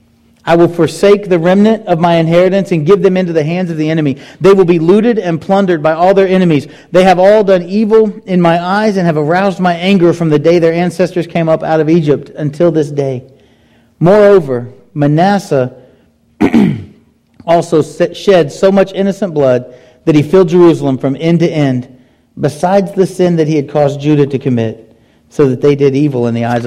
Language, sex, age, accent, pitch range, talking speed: English, male, 40-59, American, 135-175 Hz, 195 wpm